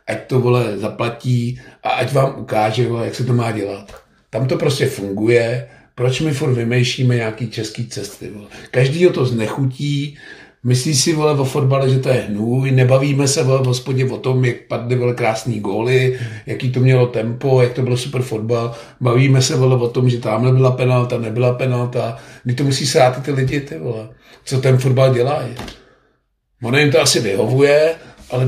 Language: Czech